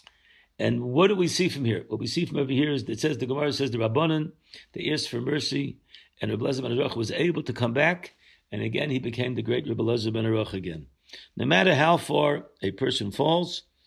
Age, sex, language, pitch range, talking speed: 60-79, male, English, 120-155 Hz, 225 wpm